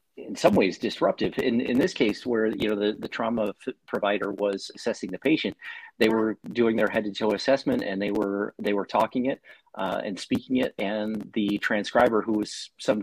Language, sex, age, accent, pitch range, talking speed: English, male, 40-59, American, 100-115 Hz, 205 wpm